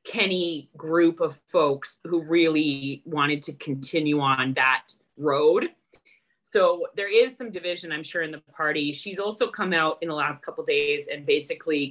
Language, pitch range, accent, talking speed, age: English, 145-180 Hz, American, 165 wpm, 30-49